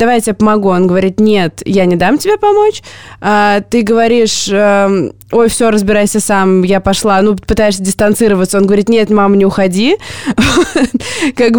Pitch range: 200-240 Hz